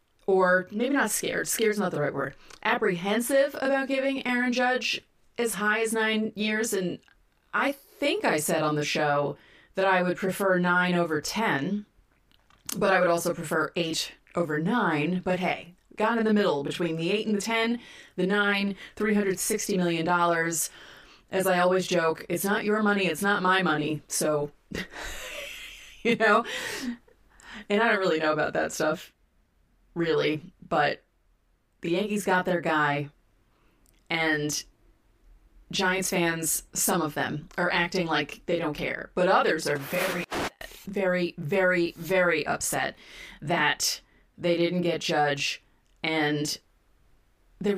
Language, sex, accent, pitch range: English, female, American, 155-205 Hz